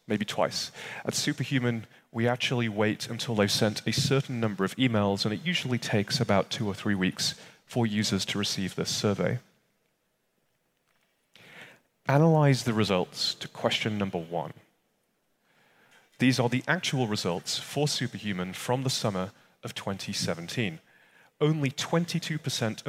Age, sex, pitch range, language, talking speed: 30-49, male, 105-140 Hz, English, 135 wpm